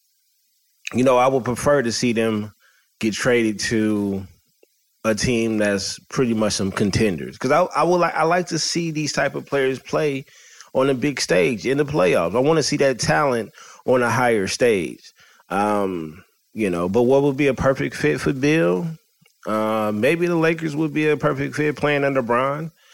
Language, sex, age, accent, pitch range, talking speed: English, male, 30-49, American, 105-140 Hz, 190 wpm